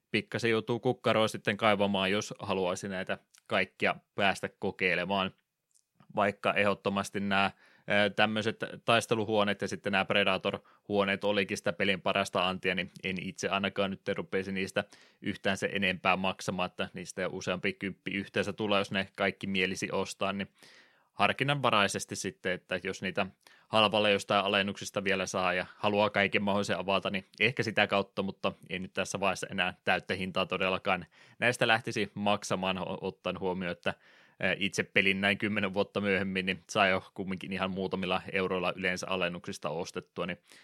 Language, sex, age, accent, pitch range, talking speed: Finnish, male, 20-39, native, 95-105 Hz, 145 wpm